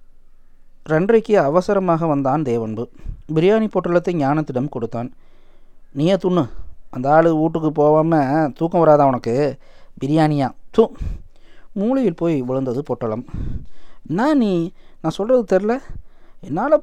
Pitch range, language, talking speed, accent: 145-200 Hz, Tamil, 105 wpm, native